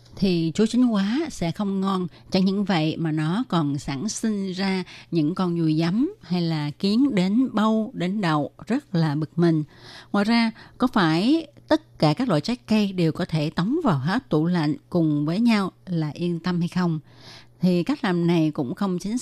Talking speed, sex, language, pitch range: 200 wpm, female, Vietnamese, 160-210 Hz